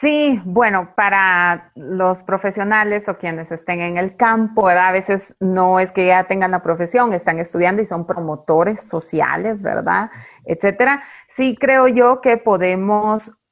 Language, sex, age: Spanish, female, 30-49